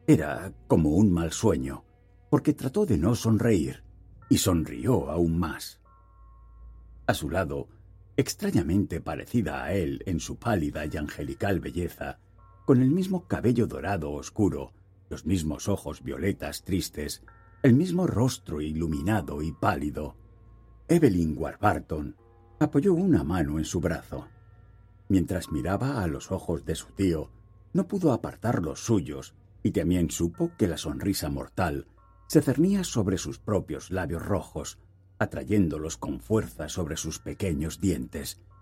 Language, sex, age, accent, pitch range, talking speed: Spanish, male, 60-79, Spanish, 85-110 Hz, 135 wpm